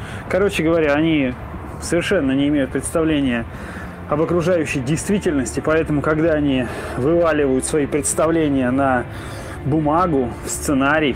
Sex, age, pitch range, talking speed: male, 20-39, 135-165 Hz, 100 wpm